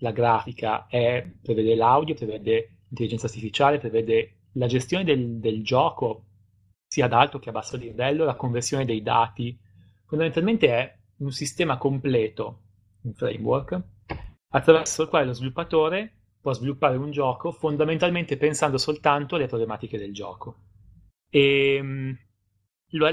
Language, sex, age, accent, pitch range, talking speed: Italian, male, 30-49, native, 110-145 Hz, 130 wpm